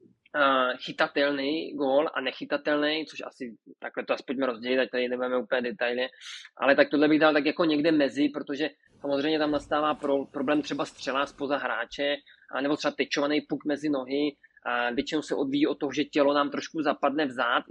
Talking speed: 175 wpm